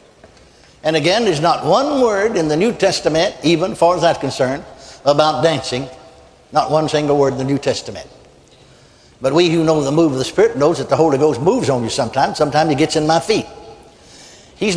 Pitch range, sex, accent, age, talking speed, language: 155-210 Hz, male, American, 60-79, 205 wpm, English